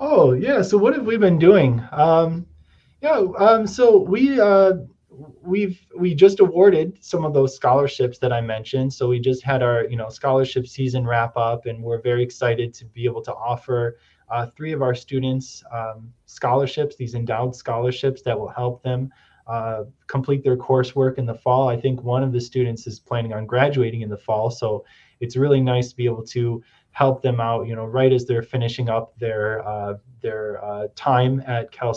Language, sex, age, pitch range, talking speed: English, male, 20-39, 120-140 Hz, 195 wpm